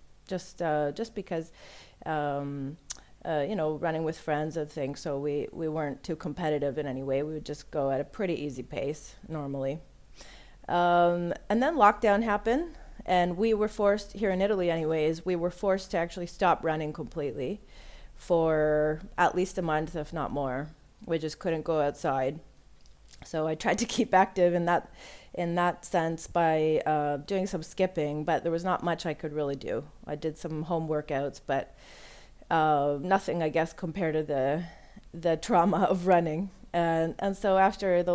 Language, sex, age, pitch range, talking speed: English, female, 30-49, 150-175 Hz, 180 wpm